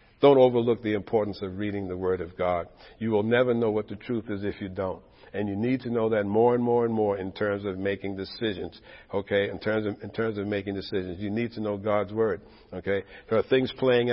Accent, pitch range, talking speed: American, 100-115 Hz, 240 wpm